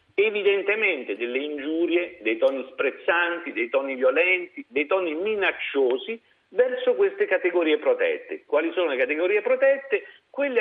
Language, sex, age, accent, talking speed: Italian, male, 50-69, native, 125 wpm